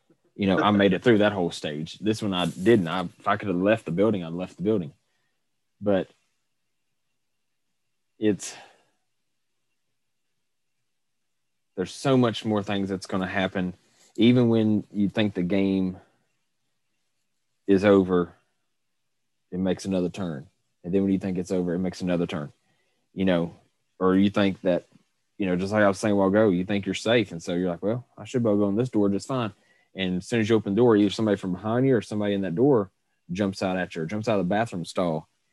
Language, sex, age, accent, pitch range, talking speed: English, male, 30-49, American, 95-110 Hz, 210 wpm